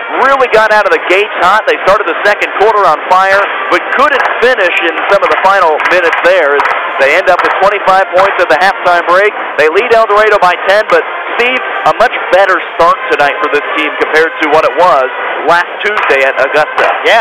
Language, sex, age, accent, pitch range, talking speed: English, male, 50-69, American, 170-220 Hz, 210 wpm